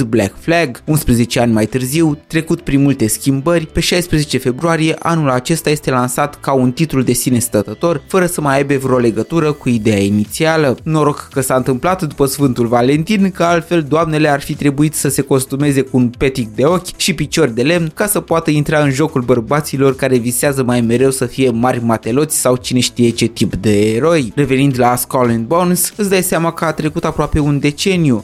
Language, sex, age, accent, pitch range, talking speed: Romanian, male, 20-39, native, 125-165 Hz, 195 wpm